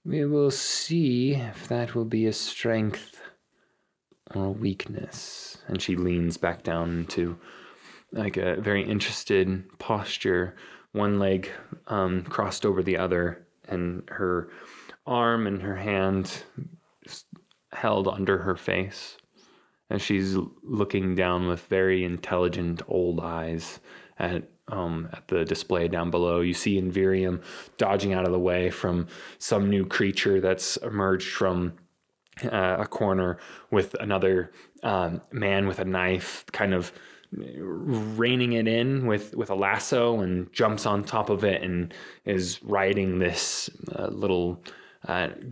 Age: 20-39